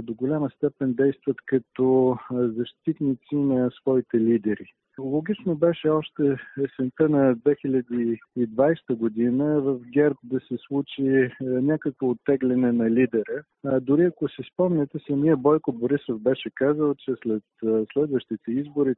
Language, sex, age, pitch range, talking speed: Bulgarian, male, 50-69, 120-150 Hz, 120 wpm